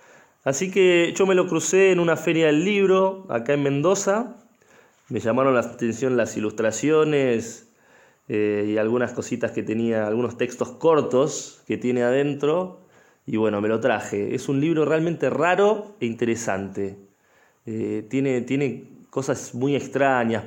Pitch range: 110-145 Hz